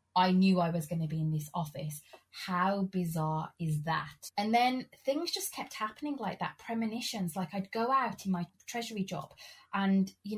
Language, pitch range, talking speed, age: English, 190-275 Hz, 190 wpm, 30-49